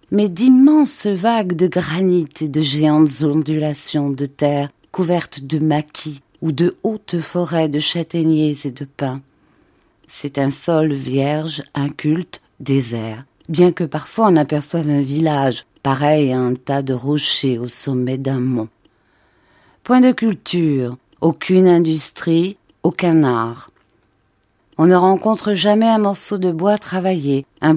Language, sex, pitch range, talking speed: French, female, 140-175 Hz, 135 wpm